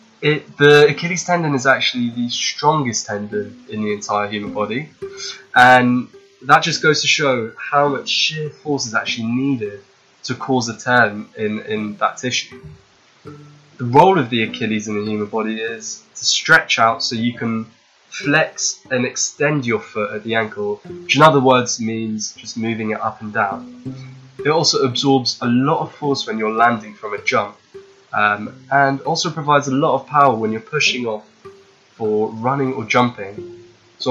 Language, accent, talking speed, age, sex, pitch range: English, British, 175 wpm, 10-29, male, 115-150 Hz